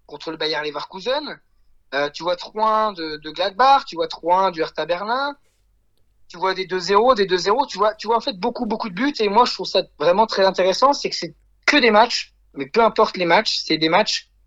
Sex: male